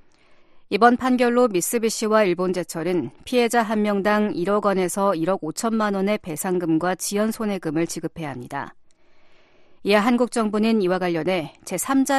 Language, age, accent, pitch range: Korean, 40-59, native, 175-225 Hz